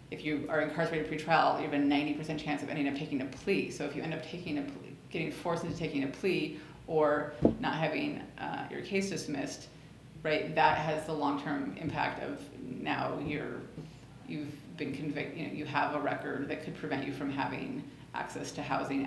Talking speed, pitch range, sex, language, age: 200 wpm, 145-160 Hz, female, English, 30-49